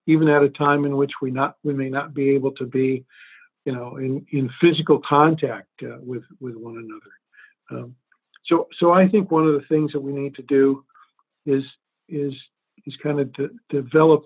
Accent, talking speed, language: American, 200 wpm, English